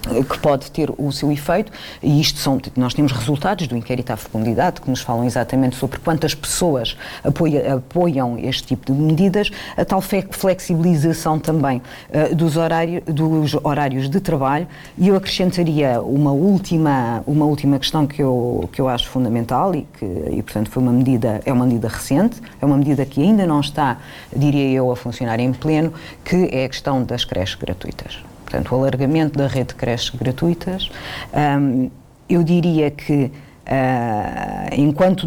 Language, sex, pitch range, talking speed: Portuguese, female, 130-155 Hz, 165 wpm